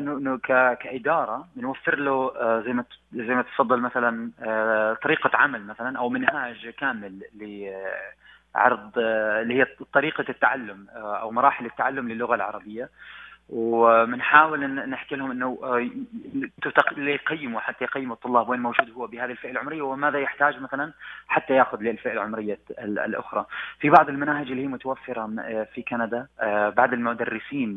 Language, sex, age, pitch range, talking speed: Arabic, male, 30-49, 115-140 Hz, 120 wpm